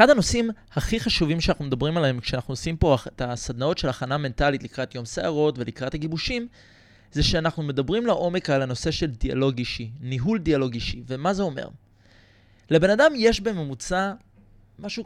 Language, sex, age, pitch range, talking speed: Hebrew, male, 20-39, 125-185 Hz, 160 wpm